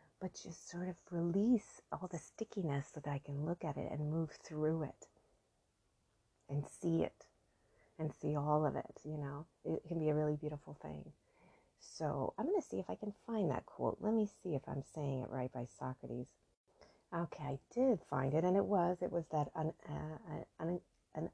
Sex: female